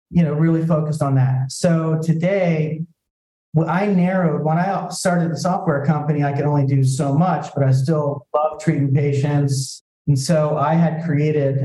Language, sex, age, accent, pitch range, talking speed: English, male, 40-59, American, 135-155 Hz, 170 wpm